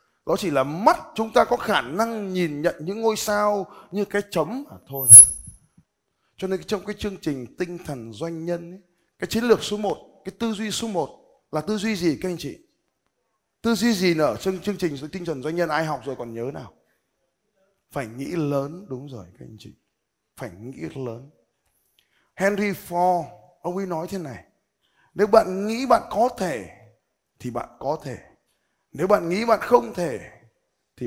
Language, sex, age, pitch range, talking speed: Vietnamese, male, 20-39, 150-205 Hz, 190 wpm